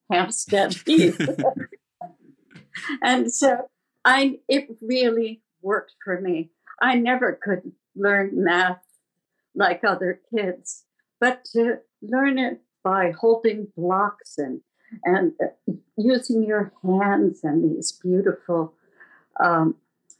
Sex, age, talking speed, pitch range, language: female, 60-79, 100 wpm, 185-245 Hz, English